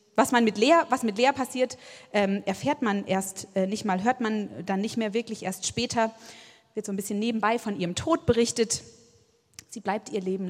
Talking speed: 205 wpm